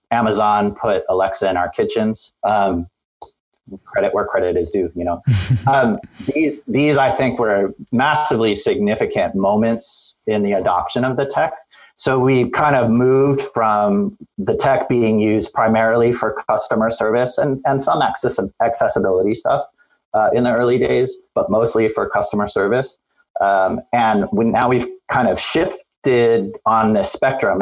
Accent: American